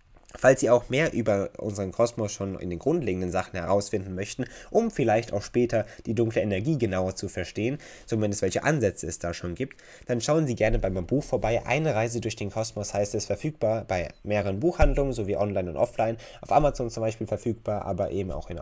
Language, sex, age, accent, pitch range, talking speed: German, male, 20-39, German, 95-125 Hz, 205 wpm